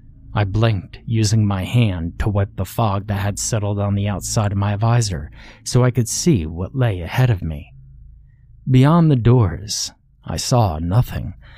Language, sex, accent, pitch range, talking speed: English, male, American, 95-120 Hz, 170 wpm